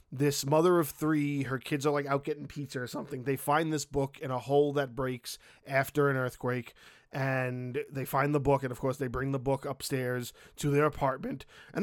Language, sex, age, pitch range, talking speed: English, male, 20-39, 135-170 Hz, 215 wpm